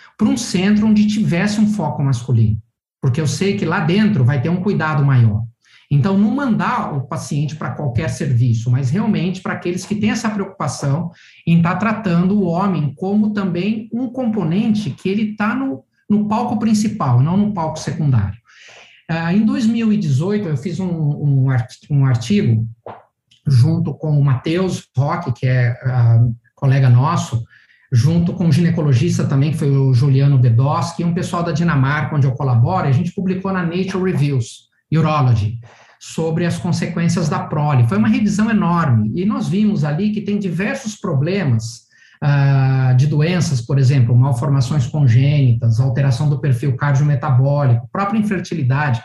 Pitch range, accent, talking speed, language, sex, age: 130-190 Hz, Brazilian, 155 wpm, Portuguese, male, 50-69